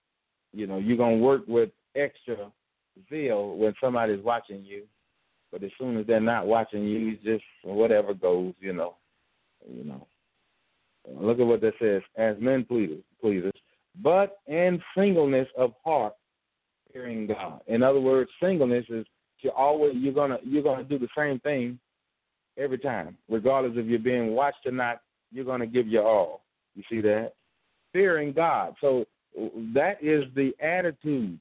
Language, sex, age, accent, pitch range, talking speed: English, male, 40-59, American, 115-155 Hz, 160 wpm